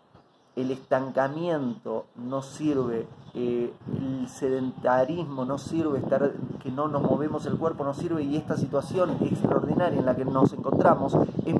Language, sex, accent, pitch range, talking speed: Spanish, male, Argentinian, 145-195 Hz, 145 wpm